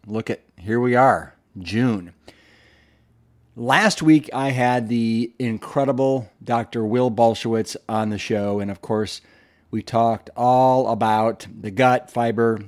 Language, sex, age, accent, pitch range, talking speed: English, male, 40-59, American, 105-125 Hz, 135 wpm